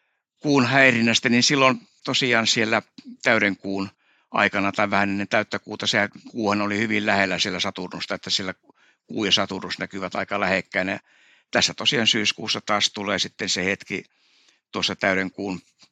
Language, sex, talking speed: Finnish, male, 140 wpm